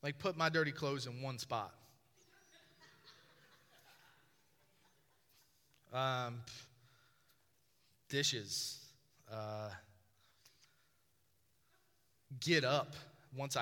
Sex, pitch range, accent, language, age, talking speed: male, 135-200 Hz, American, English, 30-49, 60 wpm